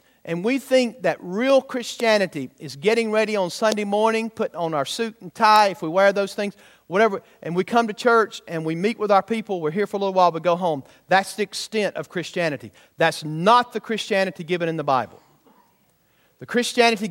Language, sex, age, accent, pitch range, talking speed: English, male, 40-59, American, 170-215 Hz, 205 wpm